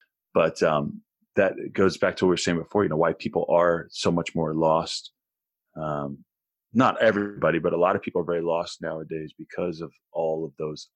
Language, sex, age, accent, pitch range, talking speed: English, male, 30-49, American, 80-100 Hz, 205 wpm